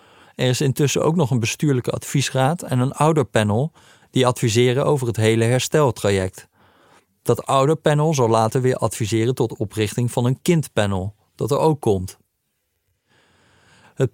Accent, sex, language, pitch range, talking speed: Dutch, male, Dutch, 110-135 Hz, 140 wpm